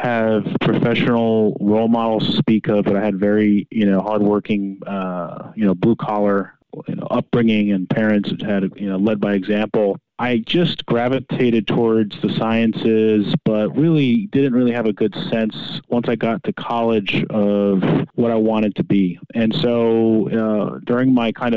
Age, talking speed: 30-49, 165 wpm